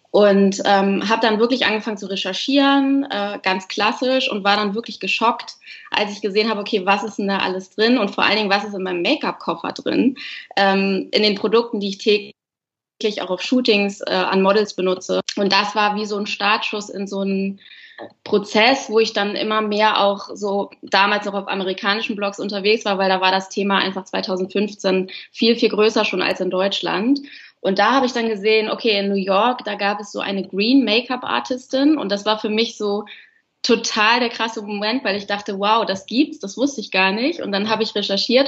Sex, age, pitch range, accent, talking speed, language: female, 20-39, 195-220 Hz, German, 205 wpm, German